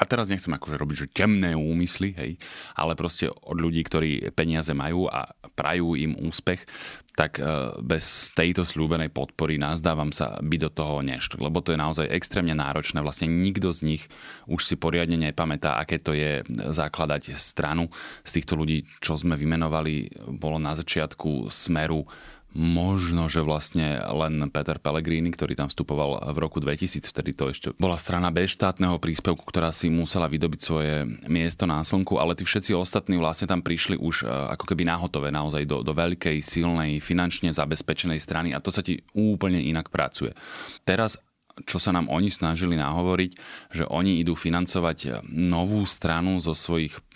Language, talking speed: Slovak, 165 wpm